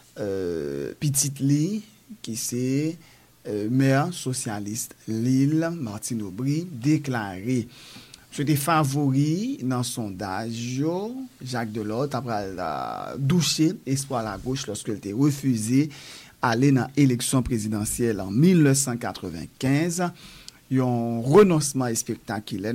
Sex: male